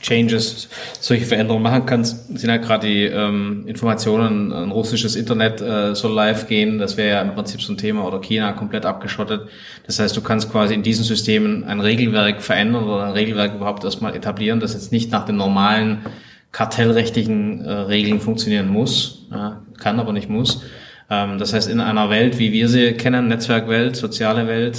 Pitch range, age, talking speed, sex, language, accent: 105-120 Hz, 20-39, 185 wpm, male, German, German